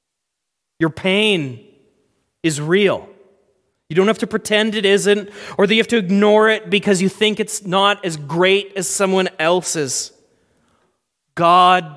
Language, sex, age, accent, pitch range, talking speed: English, male, 30-49, American, 195-245 Hz, 145 wpm